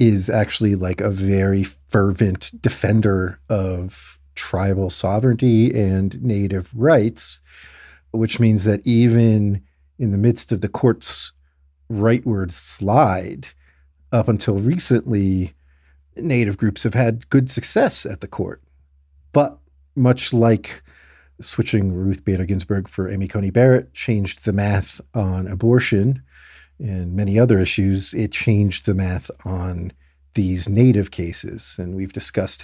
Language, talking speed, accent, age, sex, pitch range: English, 125 wpm, American, 50-69, male, 90-115 Hz